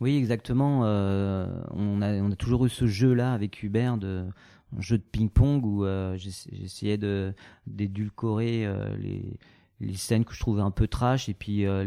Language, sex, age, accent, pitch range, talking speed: French, male, 30-49, French, 100-120 Hz, 180 wpm